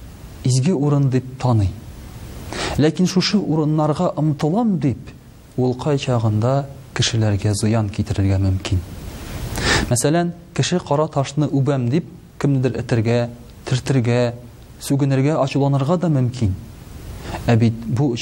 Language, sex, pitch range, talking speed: Russian, male, 115-150 Hz, 110 wpm